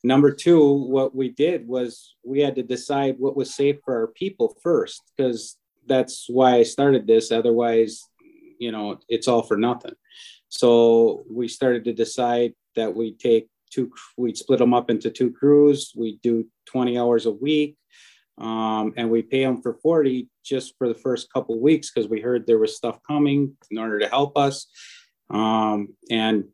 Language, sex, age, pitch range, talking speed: English, male, 30-49, 115-140 Hz, 180 wpm